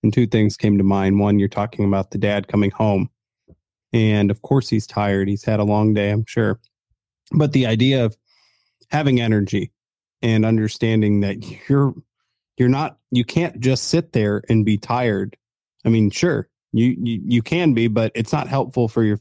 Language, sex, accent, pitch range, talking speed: English, male, American, 105-120 Hz, 185 wpm